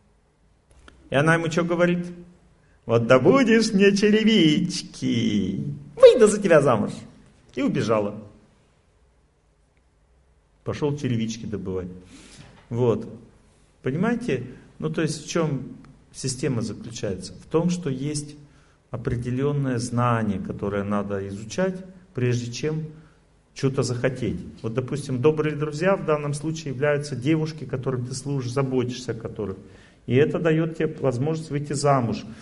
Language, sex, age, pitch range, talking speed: Russian, male, 40-59, 120-160 Hz, 115 wpm